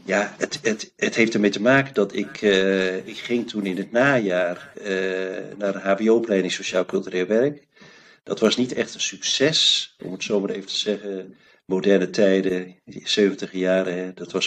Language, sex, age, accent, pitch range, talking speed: Dutch, male, 50-69, Dutch, 95-110 Hz, 180 wpm